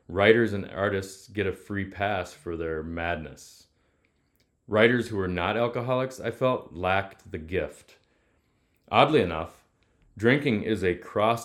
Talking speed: 135 wpm